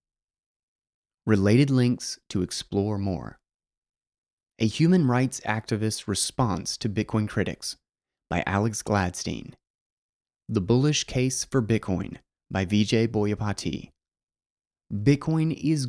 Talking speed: 100 wpm